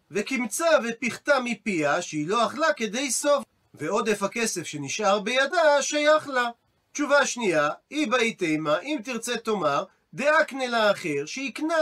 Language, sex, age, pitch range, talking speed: Hebrew, male, 40-59, 205-275 Hz, 125 wpm